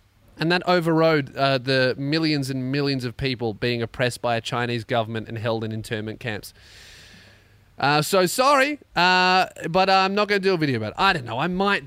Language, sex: English, male